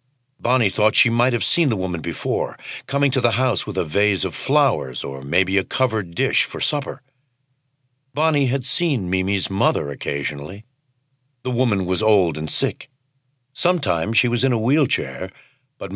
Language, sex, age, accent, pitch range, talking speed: English, male, 60-79, American, 105-135 Hz, 165 wpm